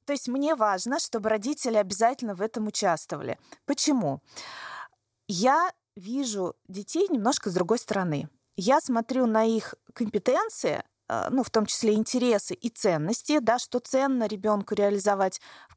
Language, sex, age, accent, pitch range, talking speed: Russian, female, 20-39, native, 200-255 Hz, 135 wpm